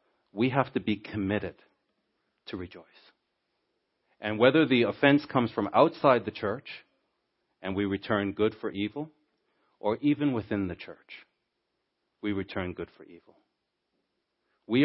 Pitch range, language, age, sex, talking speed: 105-145 Hz, English, 40-59, male, 135 wpm